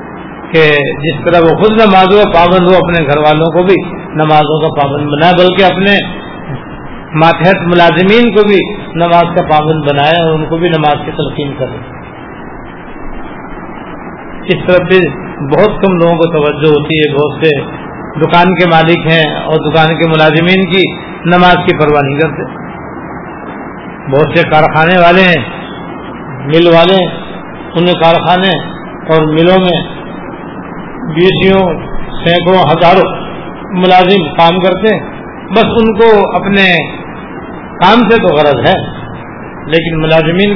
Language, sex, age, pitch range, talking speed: Urdu, male, 50-69, 155-180 Hz, 125 wpm